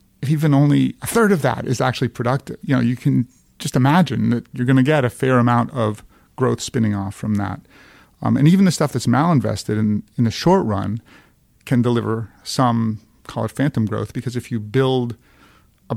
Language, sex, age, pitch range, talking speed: English, male, 40-59, 110-130 Hz, 200 wpm